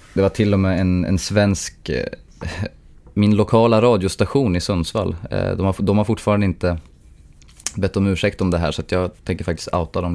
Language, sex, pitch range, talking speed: Swedish, male, 85-105 Hz, 190 wpm